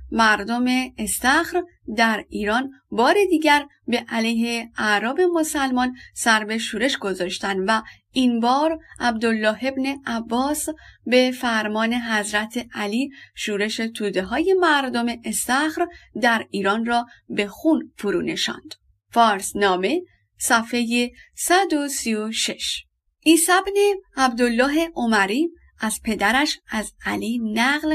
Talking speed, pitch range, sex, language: 100 wpm, 215-295 Hz, female, Persian